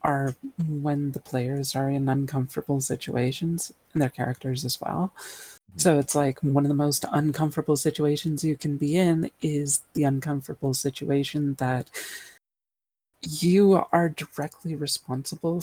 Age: 40-59